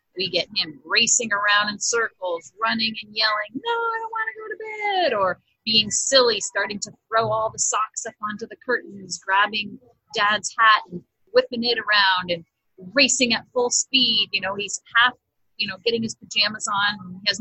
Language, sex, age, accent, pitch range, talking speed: English, female, 30-49, American, 175-235 Hz, 195 wpm